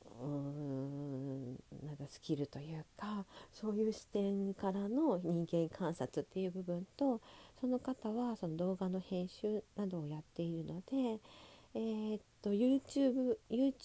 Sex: female